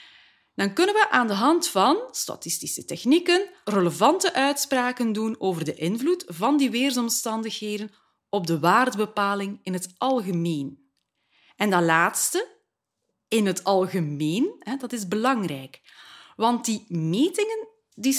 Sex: female